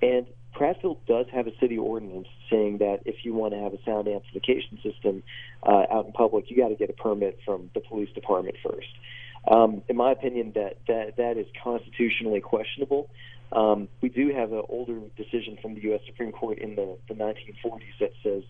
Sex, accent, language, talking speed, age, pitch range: male, American, English, 200 wpm, 40-59, 105-120 Hz